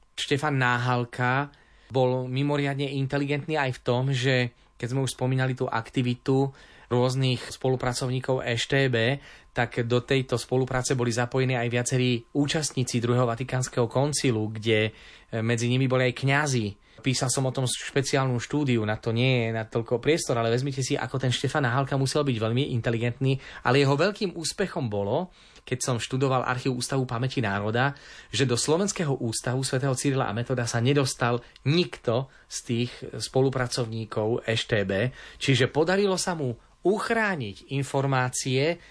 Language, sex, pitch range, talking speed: Slovak, male, 120-140 Hz, 140 wpm